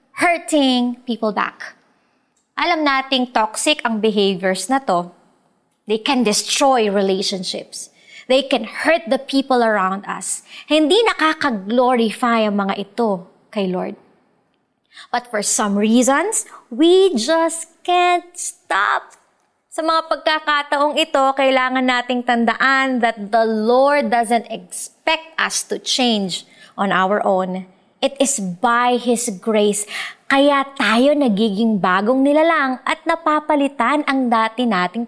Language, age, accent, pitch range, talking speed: Filipino, 20-39, native, 205-280 Hz, 120 wpm